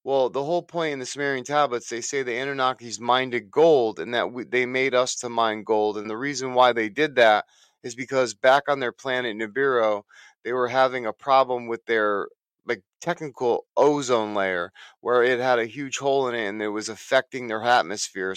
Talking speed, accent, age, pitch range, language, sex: 200 wpm, American, 30-49, 115-140 Hz, English, male